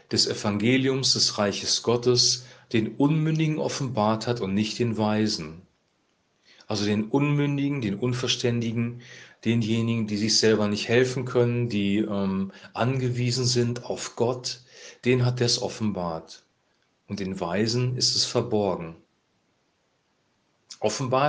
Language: German